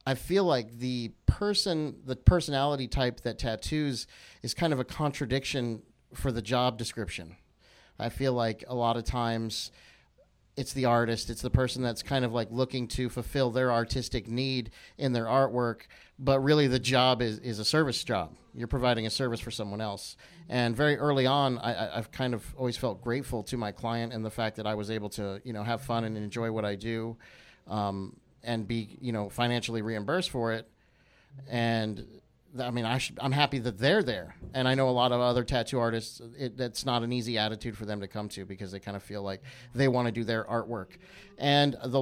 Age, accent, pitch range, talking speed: 30-49, American, 115-130 Hz, 205 wpm